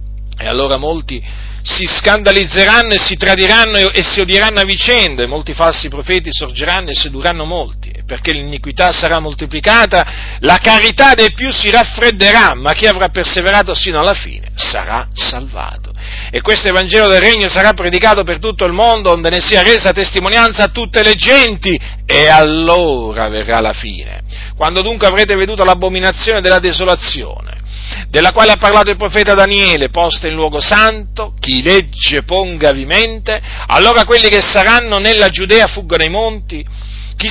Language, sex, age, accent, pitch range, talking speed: Italian, male, 40-59, native, 155-215 Hz, 155 wpm